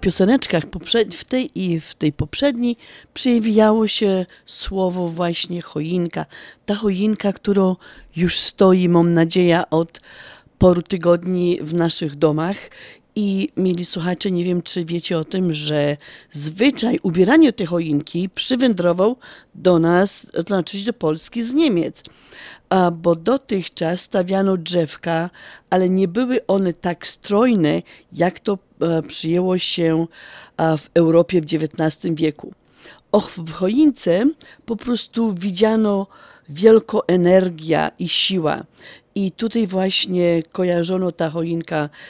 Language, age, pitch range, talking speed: Polish, 40-59, 170-205 Hz, 120 wpm